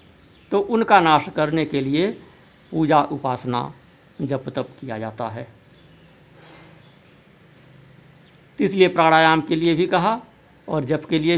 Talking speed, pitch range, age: 120 wpm, 145-180 Hz, 50-69